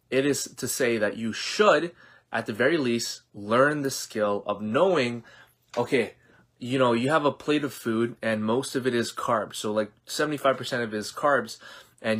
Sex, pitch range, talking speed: male, 110-135 Hz, 190 wpm